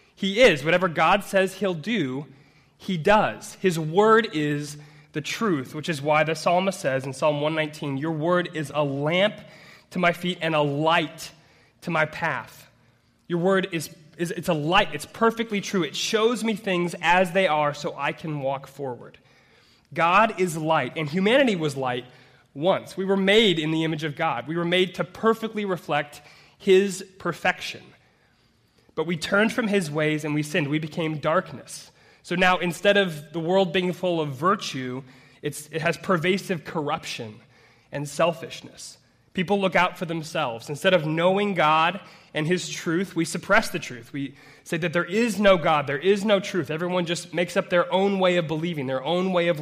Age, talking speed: 20-39, 185 wpm